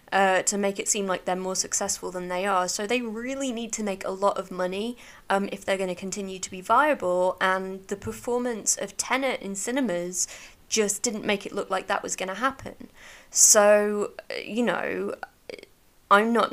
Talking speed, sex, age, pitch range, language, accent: 195 wpm, female, 20-39, 190-230 Hz, English, British